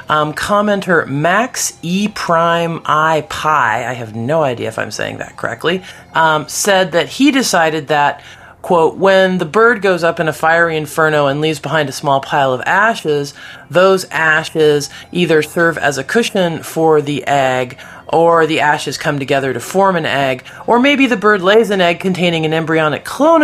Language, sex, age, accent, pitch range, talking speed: English, male, 40-59, American, 140-175 Hz, 180 wpm